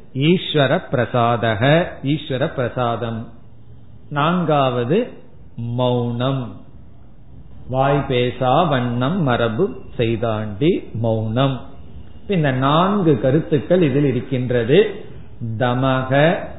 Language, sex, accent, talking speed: Tamil, male, native, 50 wpm